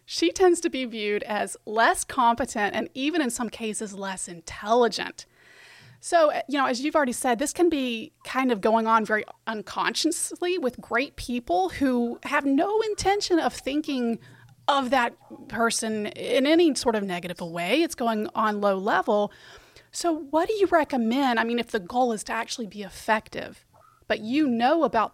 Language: English